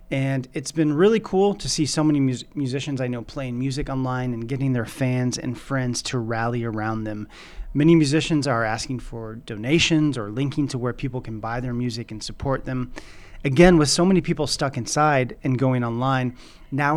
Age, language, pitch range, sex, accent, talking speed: 30-49, English, 125-150 Hz, male, American, 190 wpm